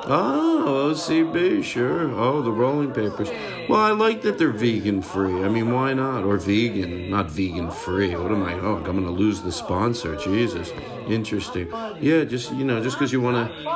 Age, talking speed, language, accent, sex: 50-69, 185 wpm, English, American, male